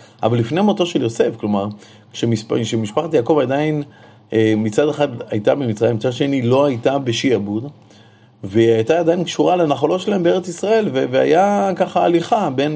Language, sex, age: Hebrew, male, 30-49